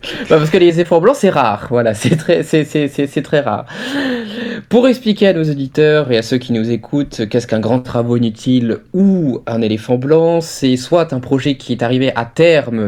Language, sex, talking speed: French, male, 215 wpm